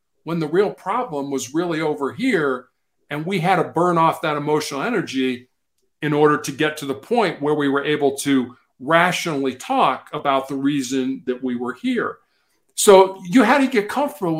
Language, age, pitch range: English, 50-69, 145-190 Hz